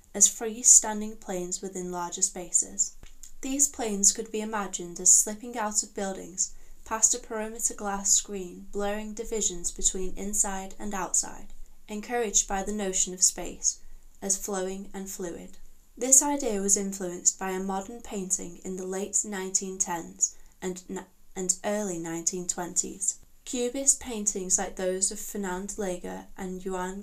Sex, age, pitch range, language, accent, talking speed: female, 10-29, 185-215 Hz, English, British, 140 wpm